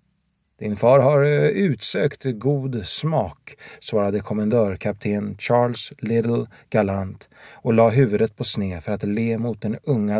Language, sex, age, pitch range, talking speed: Swedish, male, 30-49, 105-130 Hz, 130 wpm